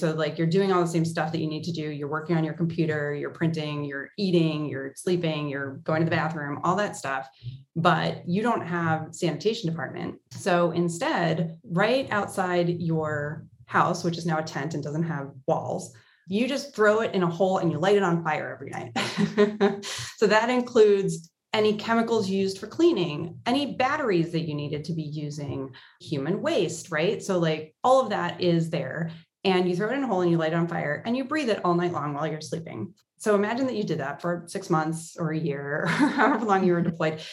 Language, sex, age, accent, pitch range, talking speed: English, female, 30-49, American, 155-200 Hz, 215 wpm